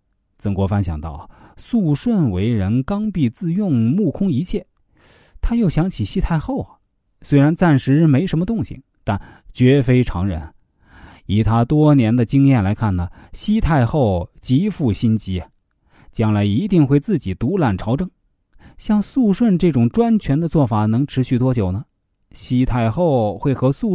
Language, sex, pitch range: Chinese, male, 105-165 Hz